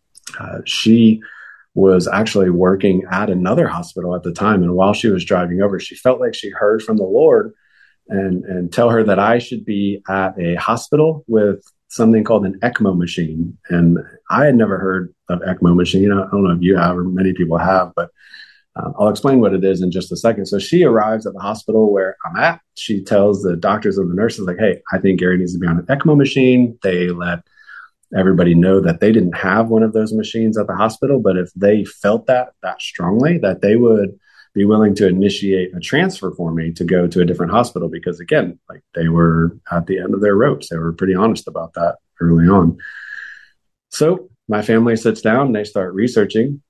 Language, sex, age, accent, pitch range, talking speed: English, male, 30-49, American, 90-110 Hz, 215 wpm